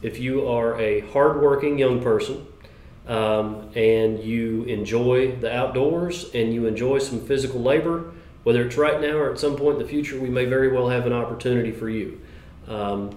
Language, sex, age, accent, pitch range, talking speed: English, male, 30-49, American, 115-140 Hz, 180 wpm